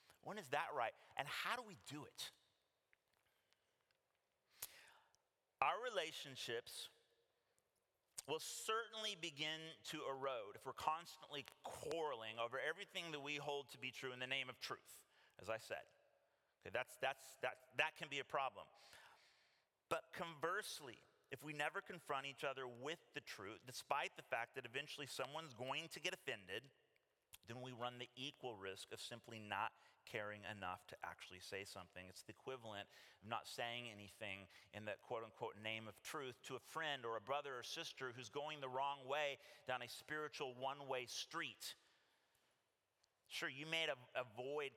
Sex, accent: male, American